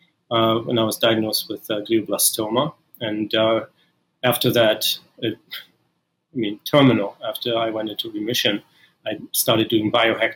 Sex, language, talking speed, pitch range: male, English, 140 wpm, 110-130 Hz